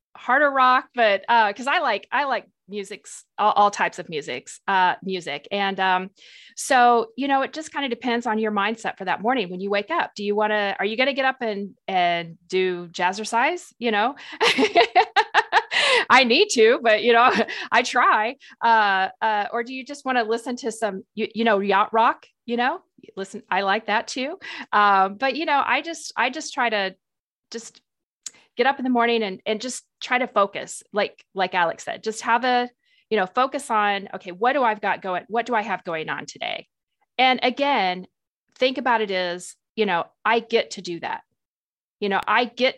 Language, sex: English, female